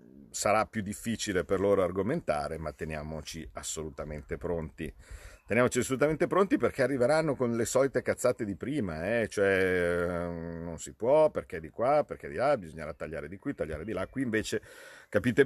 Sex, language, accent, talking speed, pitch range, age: male, Italian, native, 165 wpm, 90-115 Hz, 50-69